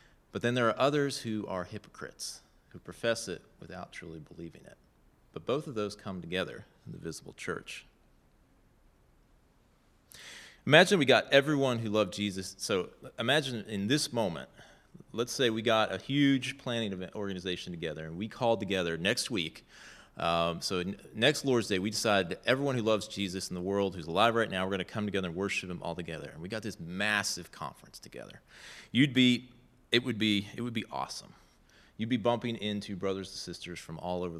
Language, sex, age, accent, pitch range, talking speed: English, male, 30-49, American, 90-115 Hz, 185 wpm